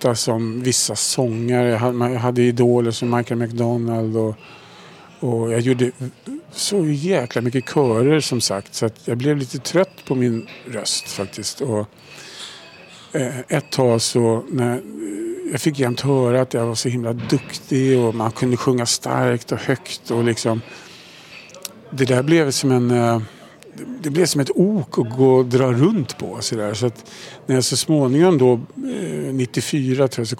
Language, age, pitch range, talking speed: Swedish, 50-69, 115-140 Hz, 155 wpm